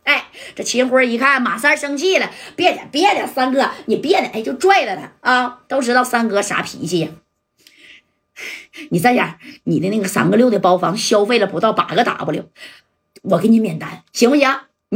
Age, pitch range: 30-49, 195-270 Hz